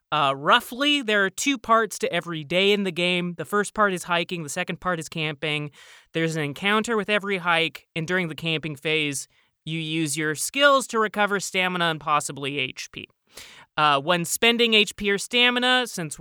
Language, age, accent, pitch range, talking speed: English, 30-49, American, 155-215 Hz, 185 wpm